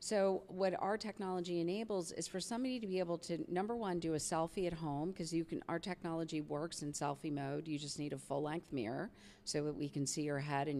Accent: American